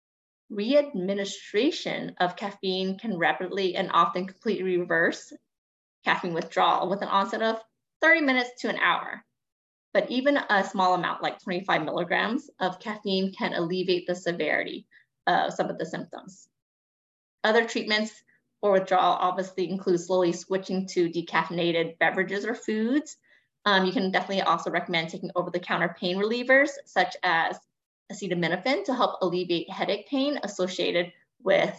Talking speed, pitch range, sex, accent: 135 wpm, 185-245 Hz, female, American